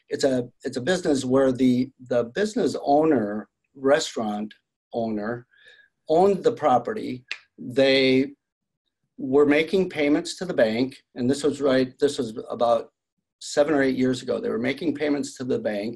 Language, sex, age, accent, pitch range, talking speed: English, male, 50-69, American, 120-150 Hz, 155 wpm